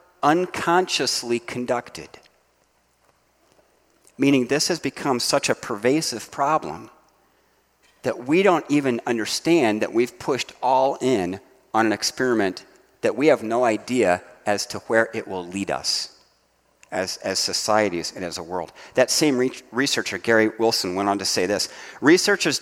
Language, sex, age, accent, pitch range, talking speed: English, male, 50-69, American, 115-155 Hz, 140 wpm